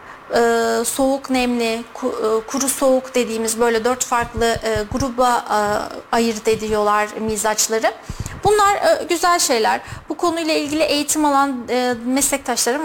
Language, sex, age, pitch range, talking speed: Turkish, female, 30-49, 230-275 Hz, 100 wpm